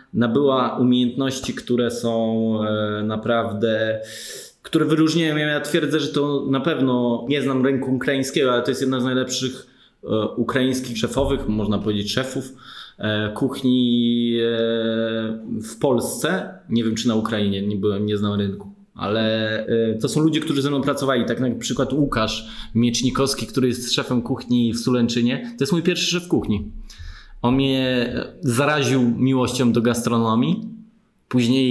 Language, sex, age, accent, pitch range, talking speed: Polish, male, 20-39, native, 115-135 Hz, 140 wpm